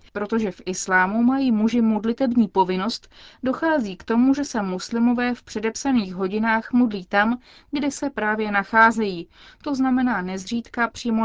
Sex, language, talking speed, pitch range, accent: female, Czech, 140 wpm, 195-235 Hz, native